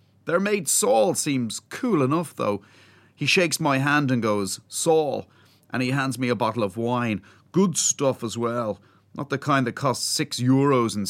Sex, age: male, 30-49